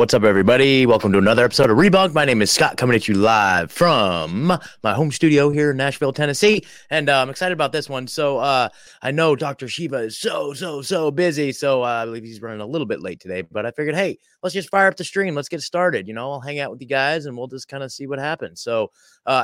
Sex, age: male, 20-39